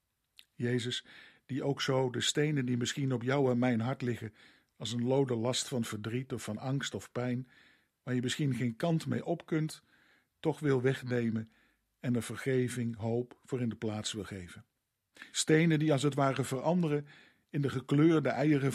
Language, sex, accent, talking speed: Dutch, male, Dutch, 180 wpm